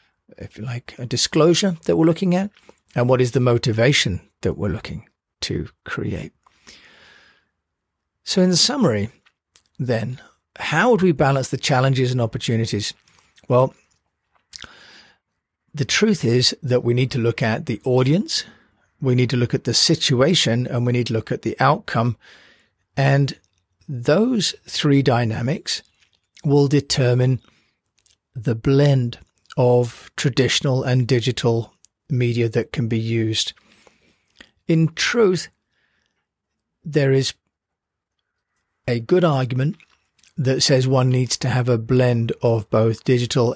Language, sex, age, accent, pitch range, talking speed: English, male, 40-59, British, 115-140 Hz, 130 wpm